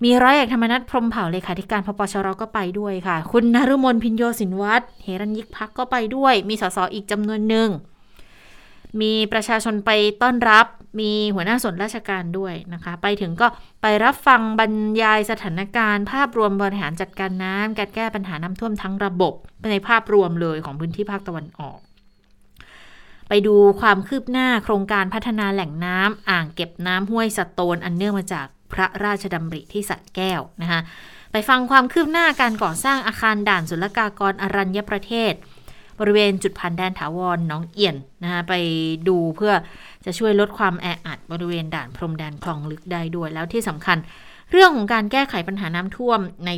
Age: 20-39